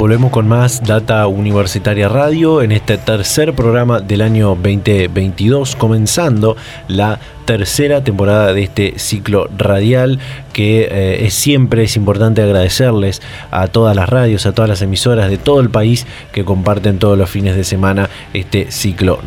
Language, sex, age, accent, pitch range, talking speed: Spanish, male, 20-39, Argentinian, 105-130 Hz, 155 wpm